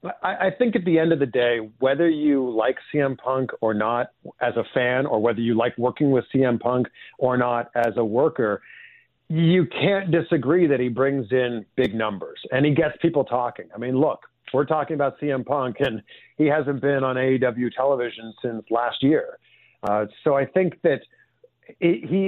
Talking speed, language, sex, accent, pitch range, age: 185 wpm, English, male, American, 125-165 Hz, 50-69